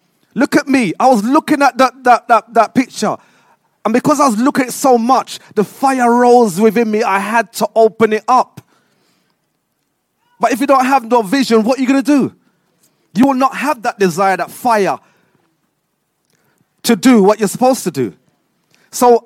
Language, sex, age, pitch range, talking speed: English, male, 30-49, 190-245 Hz, 185 wpm